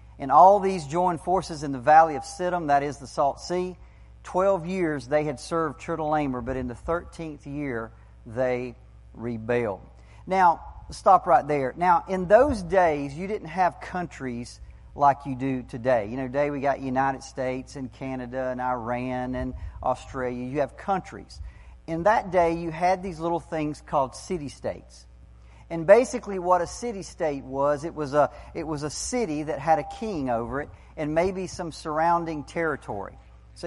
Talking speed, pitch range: 170 wpm, 130-180 Hz